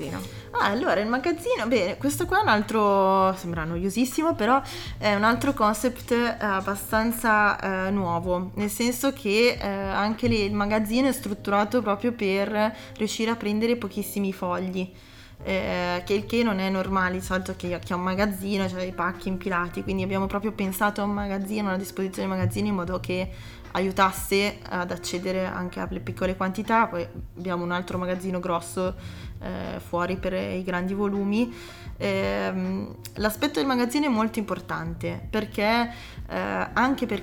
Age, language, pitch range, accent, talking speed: 20-39, Italian, 180-215 Hz, native, 160 wpm